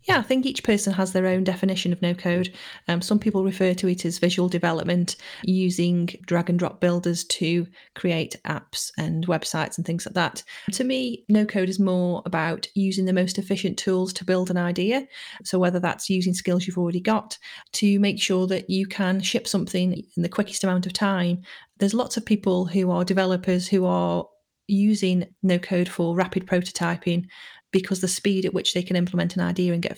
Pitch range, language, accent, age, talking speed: 175-195 Hz, English, British, 30-49, 200 wpm